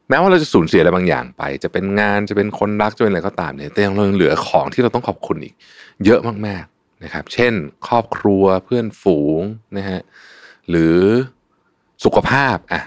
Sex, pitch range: male, 90-120 Hz